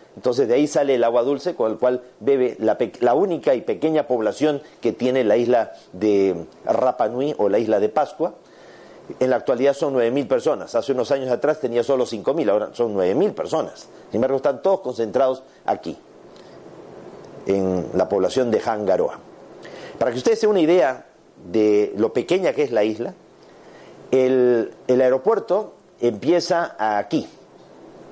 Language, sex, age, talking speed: Spanish, male, 50-69, 160 wpm